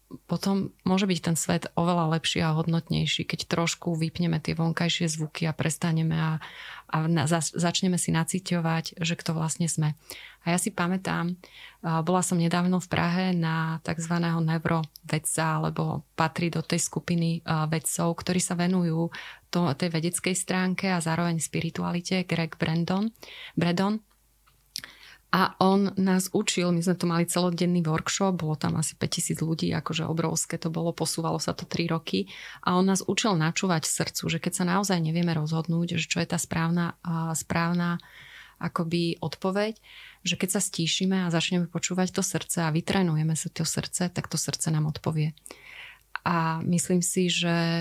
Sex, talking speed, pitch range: female, 155 wpm, 160-180 Hz